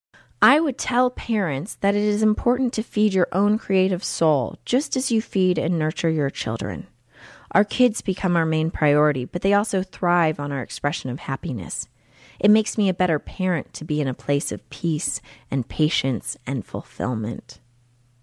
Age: 30-49